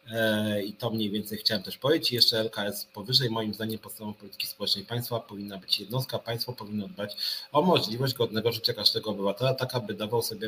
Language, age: Polish, 30-49